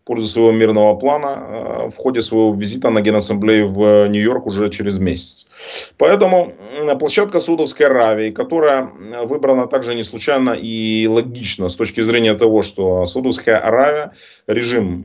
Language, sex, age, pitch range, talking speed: Russian, male, 30-49, 105-140 Hz, 150 wpm